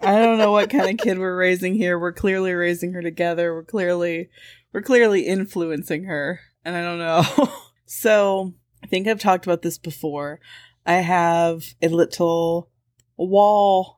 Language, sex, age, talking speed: English, female, 20-39, 165 wpm